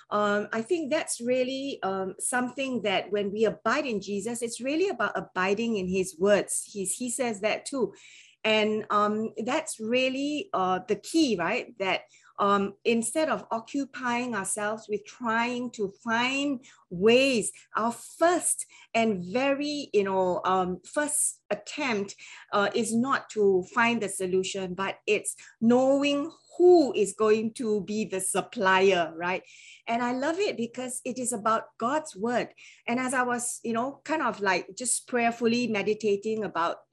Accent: Malaysian